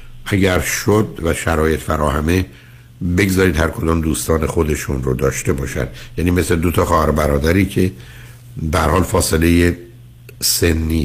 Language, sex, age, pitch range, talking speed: Persian, male, 60-79, 80-110 Hz, 125 wpm